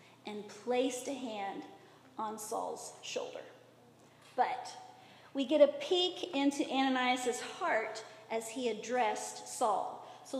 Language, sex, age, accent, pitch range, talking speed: English, female, 40-59, American, 230-315 Hz, 115 wpm